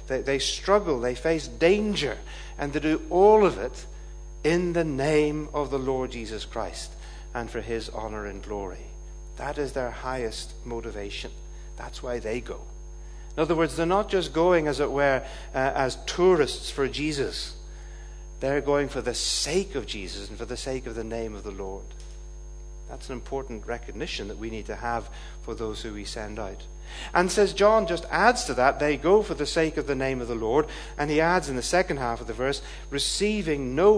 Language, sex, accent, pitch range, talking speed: English, male, British, 105-155 Hz, 195 wpm